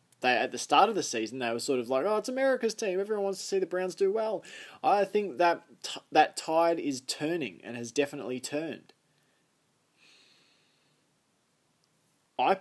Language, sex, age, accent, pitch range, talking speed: English, male, 20-39, Australian, 130-180 Hz, 175 wpm